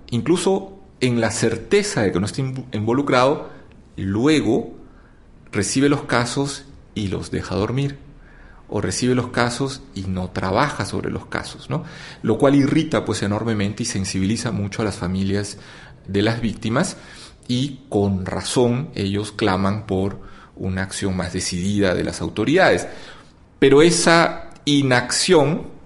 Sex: male